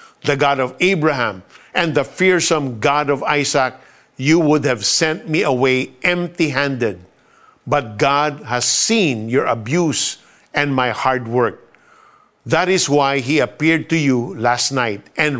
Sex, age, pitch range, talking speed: male, 50-69, 125-165 Hz, 145 wpm